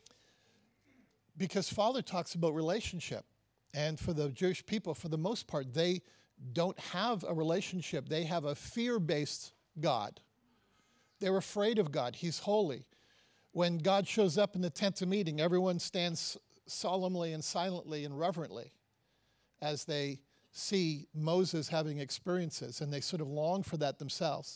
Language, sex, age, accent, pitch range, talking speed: English, male, 50-69, American, 140-175 Hz, 145 wpm